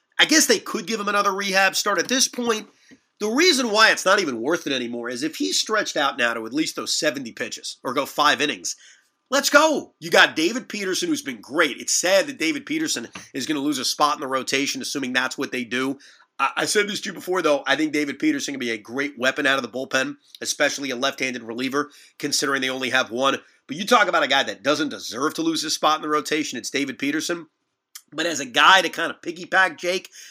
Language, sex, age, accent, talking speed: English, male, 30-49, American, 245 wpm